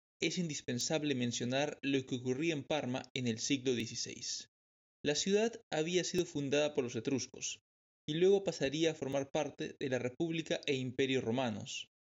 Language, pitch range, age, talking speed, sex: Spanish, 130-165 Hz, 20-39, 160 wpm, male